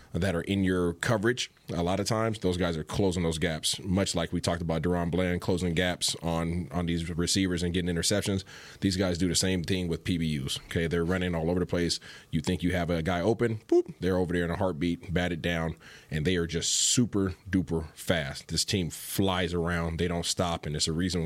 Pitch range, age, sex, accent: 85-100 Hz, 30-49, male, American